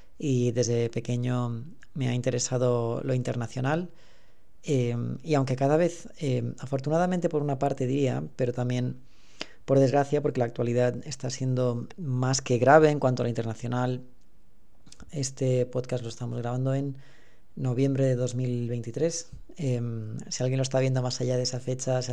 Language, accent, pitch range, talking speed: Spanish, Spanish, 120-135 Hz, 155 wpm